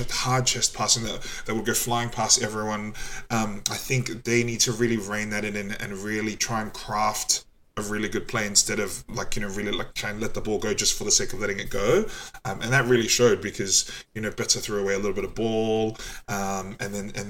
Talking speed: 245 wpm